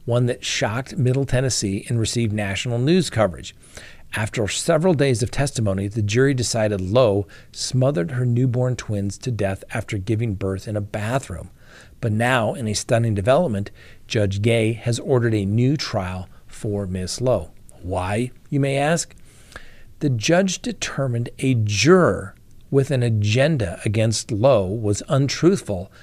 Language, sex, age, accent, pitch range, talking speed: English, male, 50-69, American, 105-135 Hz, 145 wpm